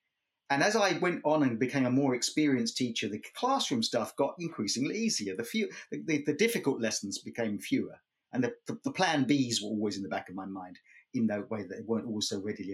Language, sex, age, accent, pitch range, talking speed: English, male, 40-59, British, 110-145 Hz, 230 wpm